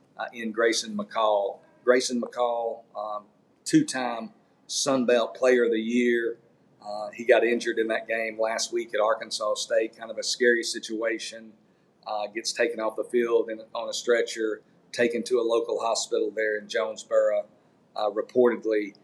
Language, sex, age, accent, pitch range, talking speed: English, male, 50-69, American, 110-140 Hz, 155 wpm